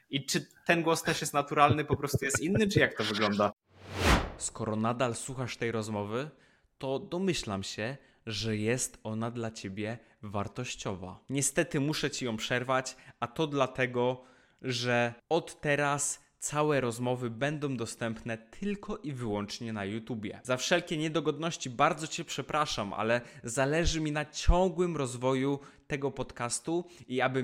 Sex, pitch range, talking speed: male, 115-150 Hz, 140 wpm